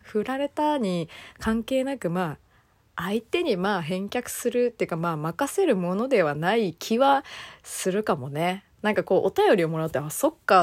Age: 20-39